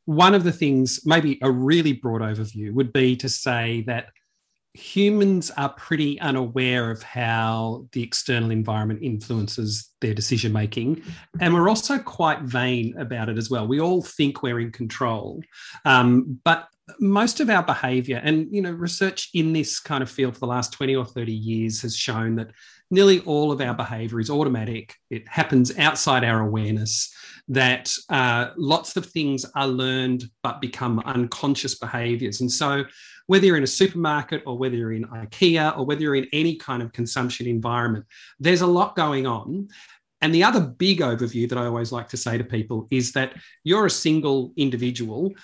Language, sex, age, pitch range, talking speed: English, male, 40-59, 120-155 Hz, 180 wpm